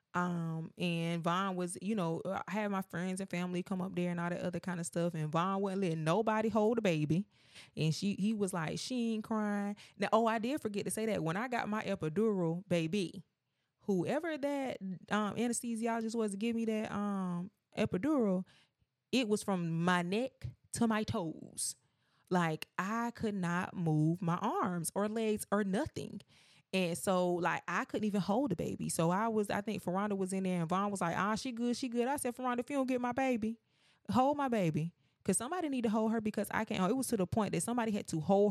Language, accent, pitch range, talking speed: English, American, 170-220 Hz, 220 wpm